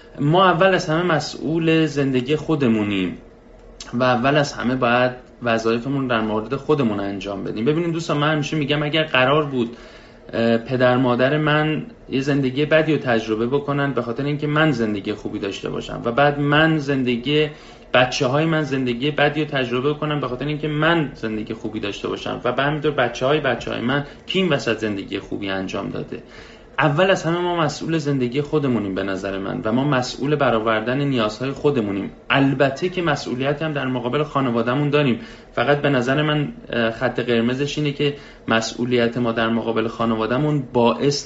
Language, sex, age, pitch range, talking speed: Persian, male, 30-49, 115-150 Hz, 160 wpm